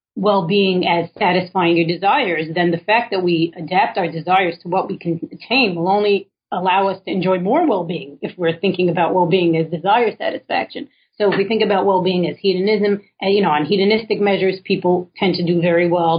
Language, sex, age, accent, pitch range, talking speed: English, female, 40-59, American, 170-195 Hz, 195 wpm